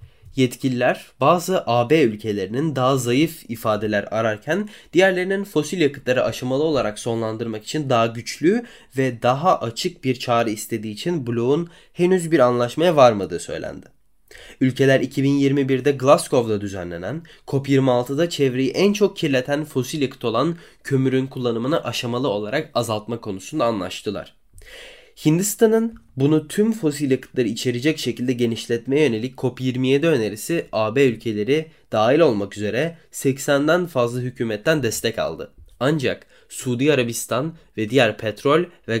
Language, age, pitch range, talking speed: Turkish, 20-39, 115-155 Hz, 120 wpm